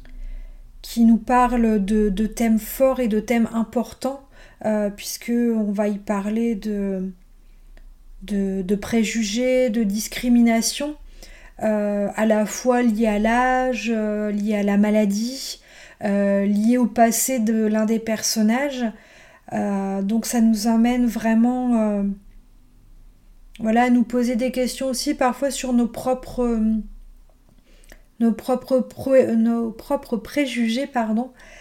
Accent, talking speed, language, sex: French, 130 wpm, French, female